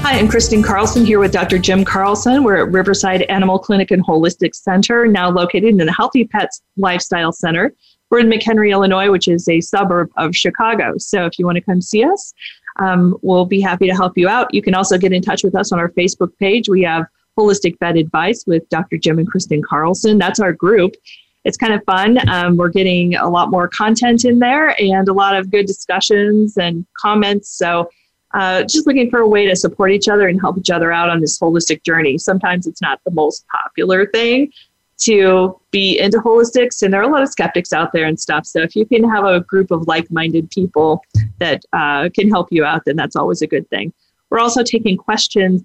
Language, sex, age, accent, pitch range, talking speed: English, female, 30-49, American, 175-210 Hz, 220 wpm